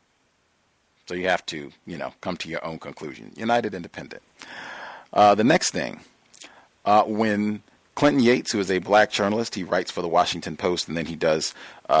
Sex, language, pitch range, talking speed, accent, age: male, English, 100-125 Hz, 185 wpm, American, 40-59